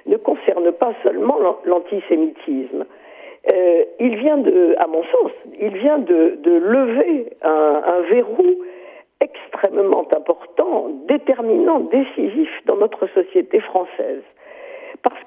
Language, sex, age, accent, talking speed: French, female, 50-69, French, 110 wpm